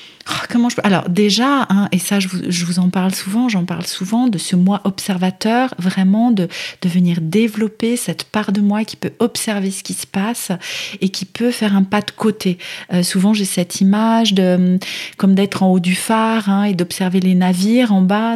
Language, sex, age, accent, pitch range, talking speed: French, female, 40-59, French, 180-215 Hz, 210 wpm